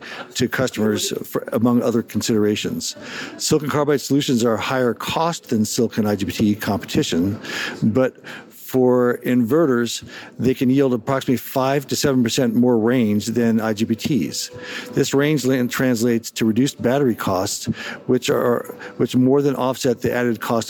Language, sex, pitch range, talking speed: English, male, 115-135 Hz, 135 wpm